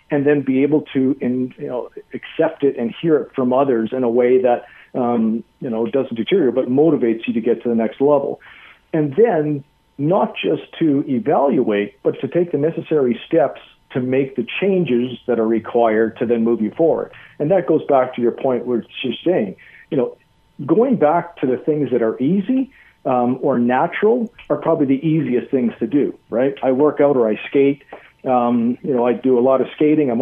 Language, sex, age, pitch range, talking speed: English, male, 50-69, 120-155 Hz, 195 wpm